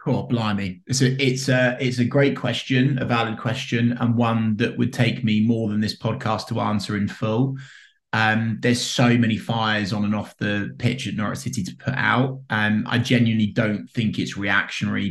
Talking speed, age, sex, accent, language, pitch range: 205 wpm, 20-39, male, British, English, 105-130 Hz